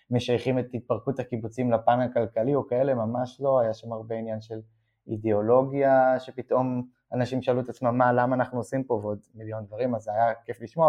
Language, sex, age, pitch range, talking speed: Hebrew, male, 20-39, 115-130 Hz, 185 wpm